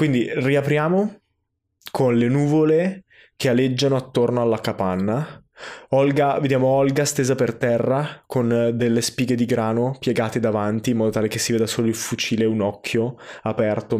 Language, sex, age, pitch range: Italian, male, 20-39, 105-130 Hz